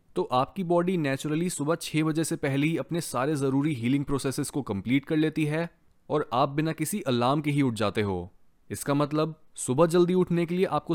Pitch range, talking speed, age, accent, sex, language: 115-160 Hz, 210 wpm, 20-39, native, male, Hindi